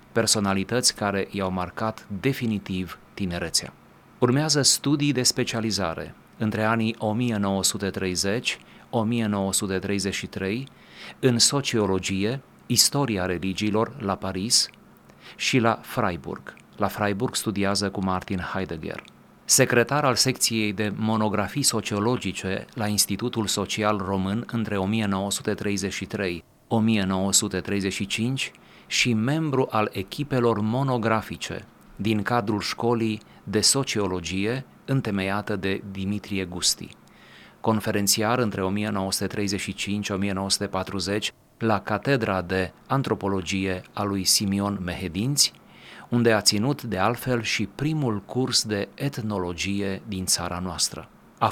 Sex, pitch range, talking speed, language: male, 95-115 Hz, 90 wpm, Romanian